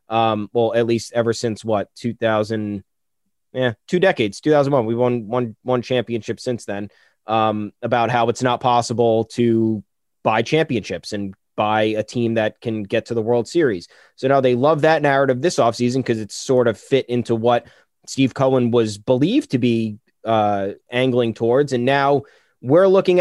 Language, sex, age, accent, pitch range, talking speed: English, male, 20-39, American, 110-130 Hz, 170 wpm